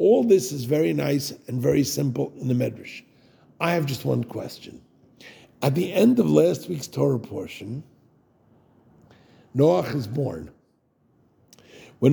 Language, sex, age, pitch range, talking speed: English, male, 60-79, 140-190 Hz, 140 wpm